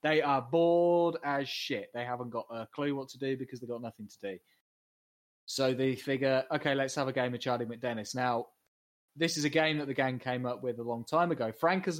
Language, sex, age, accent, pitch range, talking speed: English, male, 20-39, British, 120-150 Hz, 235 wpm